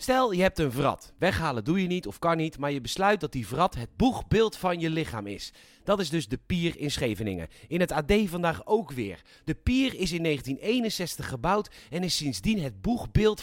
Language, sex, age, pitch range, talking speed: Dutch, male, 40-59, 145-195 Hz, 215 wpm